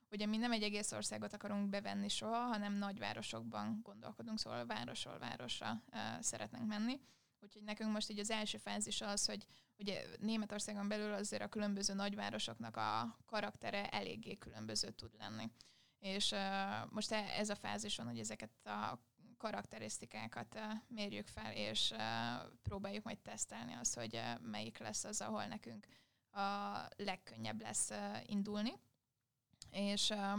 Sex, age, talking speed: female, 20-39, 140 wpm